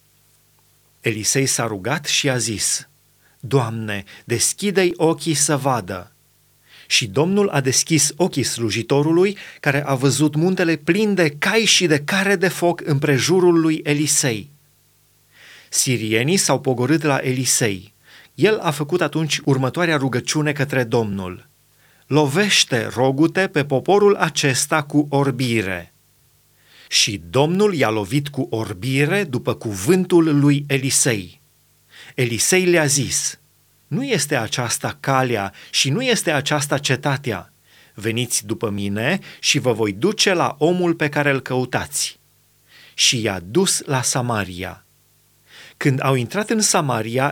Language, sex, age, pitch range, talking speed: Romanian, male, 30-49, 120-160 Hz, 125 wpm